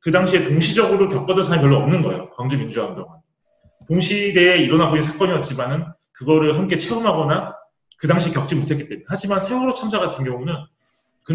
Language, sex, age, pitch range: Japanese, male, 30-49, 140-180 Hz